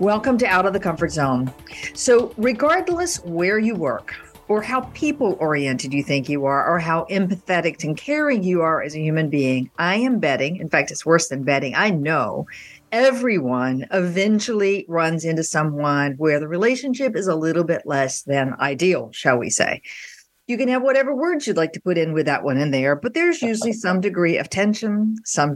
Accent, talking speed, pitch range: American, 190 wpm, 150-210 Hz